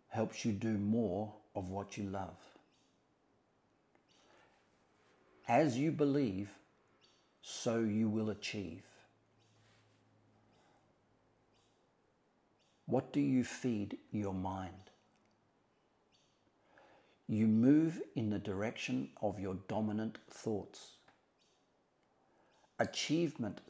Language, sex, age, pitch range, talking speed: English, male, 50-69, 100-120 Hz, 80 wpm